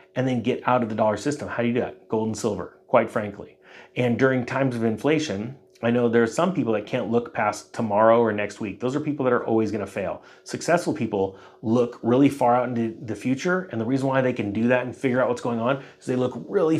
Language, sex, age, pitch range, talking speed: English, male, 30-49, 110-135 Hz, 255 wpm